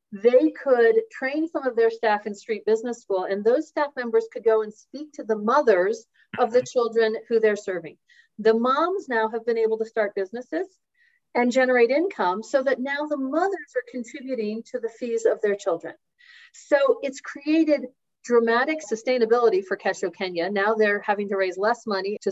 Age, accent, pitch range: 40-59, American, 205-260 Hz